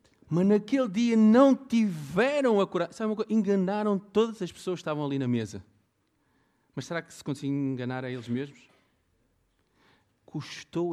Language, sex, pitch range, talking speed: Portuguese, male, 120-180 Hz, 145 wpm